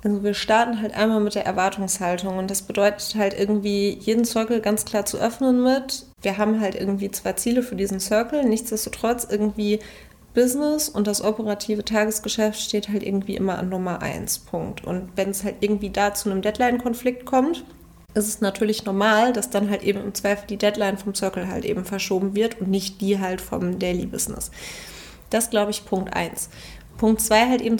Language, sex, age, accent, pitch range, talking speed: German, female, 30-49, German, 195-220 Hz, 190 wpm